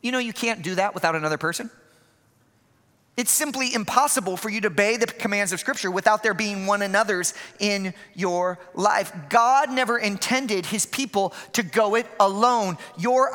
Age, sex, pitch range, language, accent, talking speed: 40-59, male, 185-235 Hz, English, American, 170 wpm